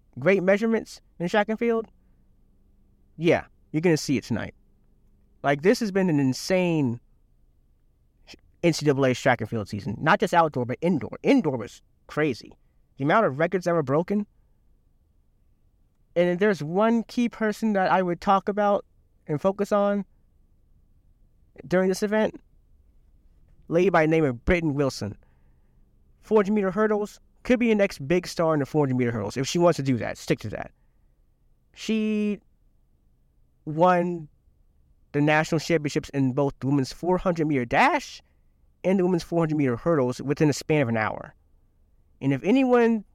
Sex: male